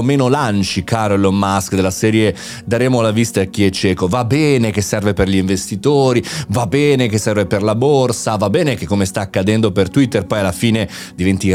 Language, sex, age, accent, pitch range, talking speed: Italian, male, 30-49, native, 95-125 Hz, 210 wpm